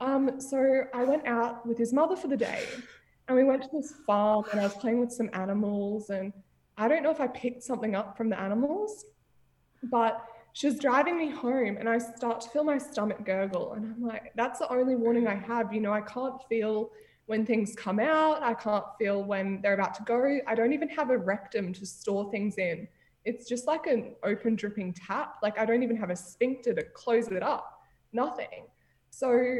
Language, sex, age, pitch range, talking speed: English, female, 20-39, 210-260 Hz, 215 wpm